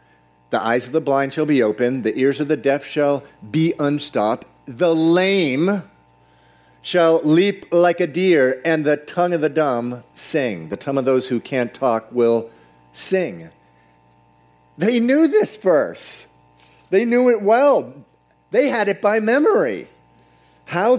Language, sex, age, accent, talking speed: English, male, 50-69, American, 150 wpm